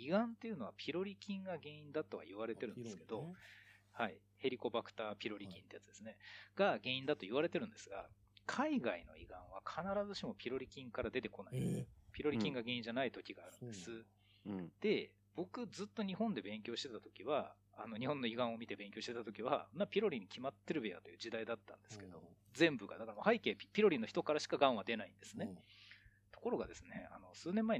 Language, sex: Japanese, male